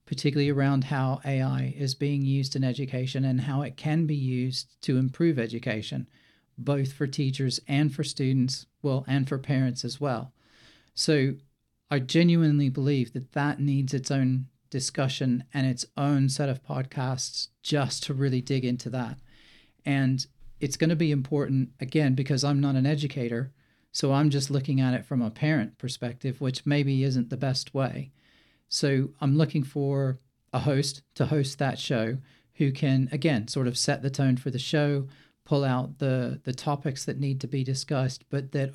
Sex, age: male, 40-59